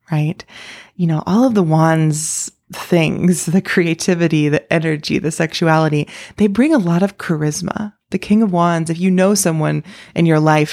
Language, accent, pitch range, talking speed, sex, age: English, American, 155-195 Hz, 175 wpm, female, 20-39